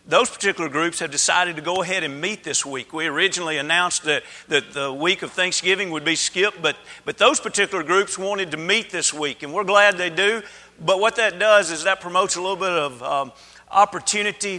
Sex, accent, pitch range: male, American, 160-195 Hz